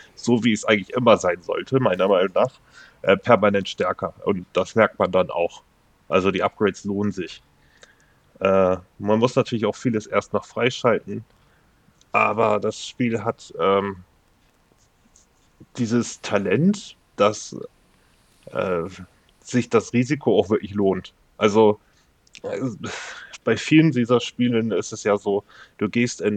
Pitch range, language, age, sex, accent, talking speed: 100-120 Hz, German, 10-29, male, German, 140 wpm